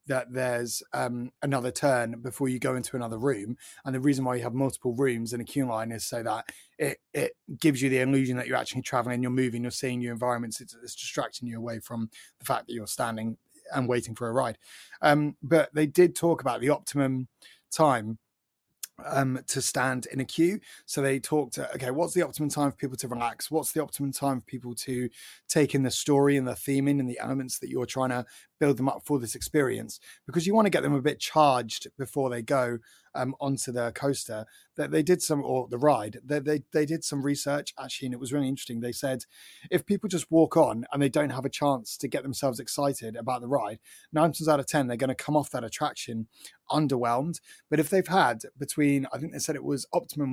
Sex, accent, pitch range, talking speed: male, British, 125-150 Hz, 230 wpm